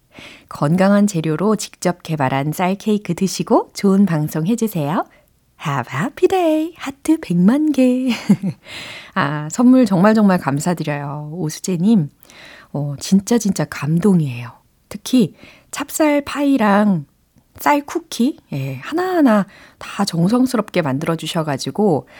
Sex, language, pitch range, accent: female, Korean, 155-225 Hz, native